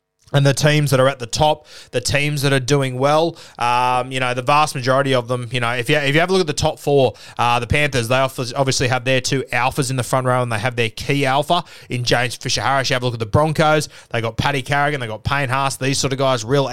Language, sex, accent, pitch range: English, male, Australian, 130-155 Hz